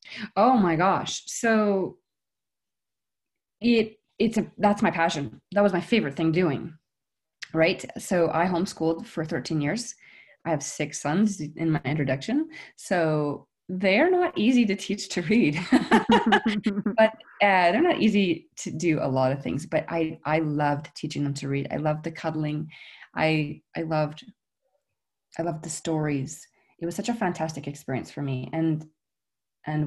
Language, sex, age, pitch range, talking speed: English, female, 20-39, 150-200 Hz, 155 wpm